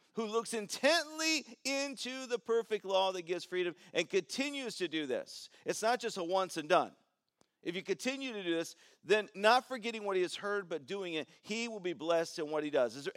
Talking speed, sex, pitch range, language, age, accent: 220 wpm, male, 180-260 Hz, English, 50-69, American